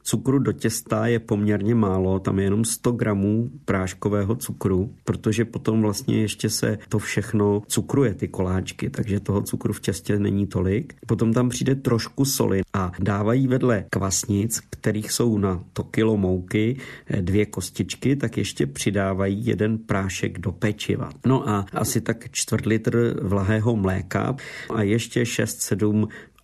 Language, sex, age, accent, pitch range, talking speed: Czech, male, 50-69, native, 100-115 Hz, 150 wpm